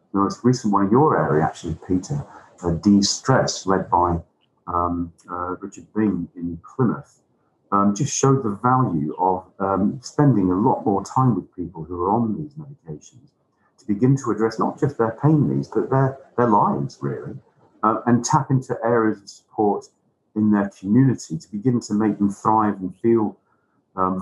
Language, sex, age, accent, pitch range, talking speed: English, male, 40-59, British, 90-115 Hz, 175 wpm